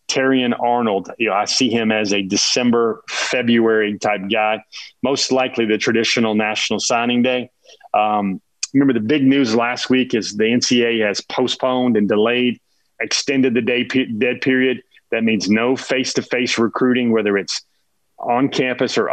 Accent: American